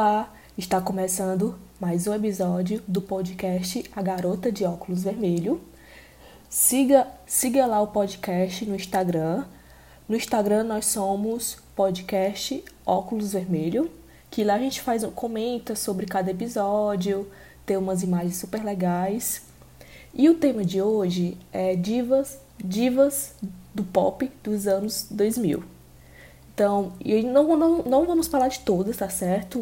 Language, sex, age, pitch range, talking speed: Portuguese, female, 20-39, 185-230 Hz, 130 wpm